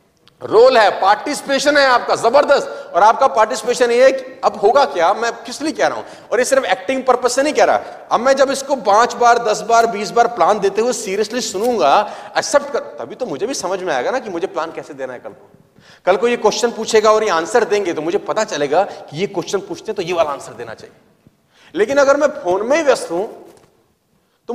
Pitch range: 205-275 Hz